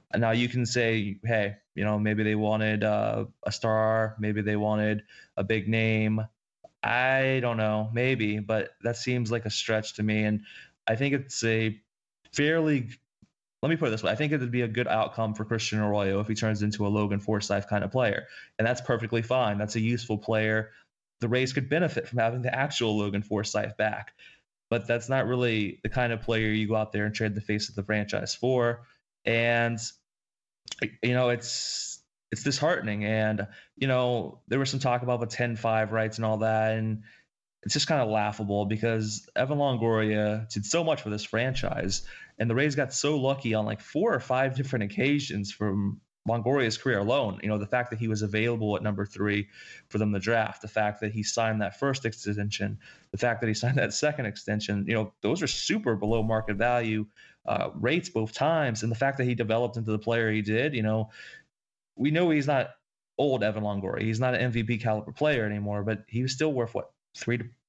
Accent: American